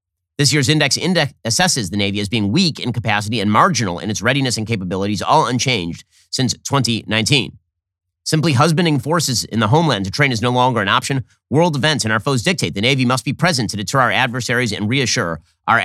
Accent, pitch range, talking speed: American, 95-140 Hz, 205 wpm